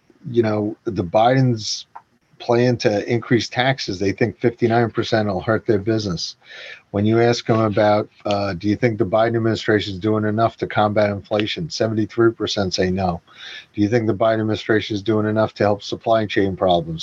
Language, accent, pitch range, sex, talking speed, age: English, American, 105-125 Hz, male, 175 wpm, 50-69